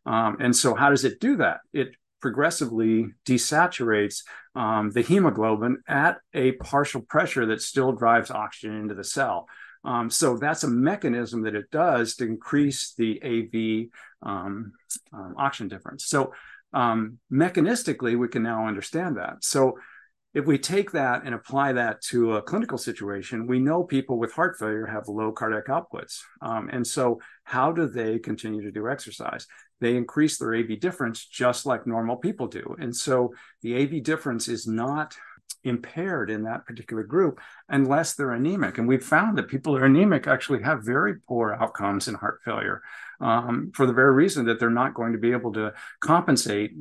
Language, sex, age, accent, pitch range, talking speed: English, male, 50-69, American, 110-135 Hz, 175 wpm